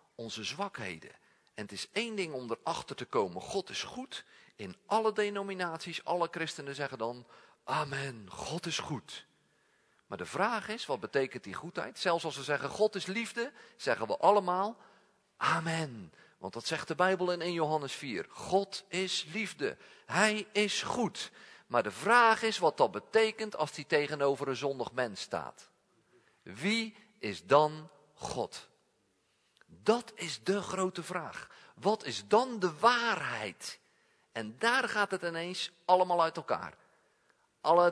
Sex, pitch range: male, 150-205 Hz